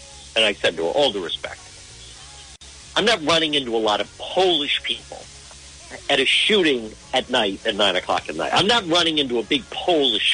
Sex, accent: male, American